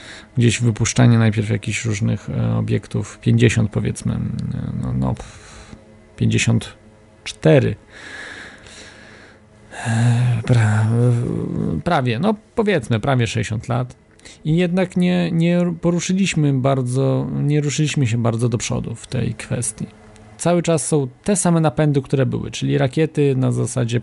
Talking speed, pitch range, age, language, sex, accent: 115 wpm, 110-150 Hz, 40-59, Polish, male, native